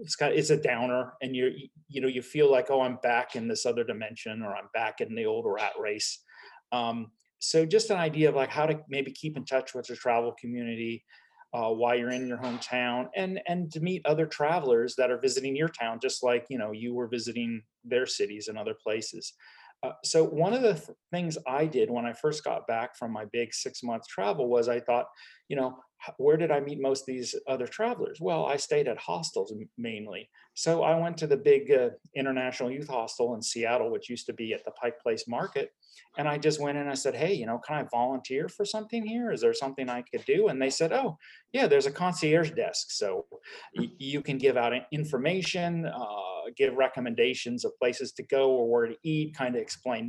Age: 40-59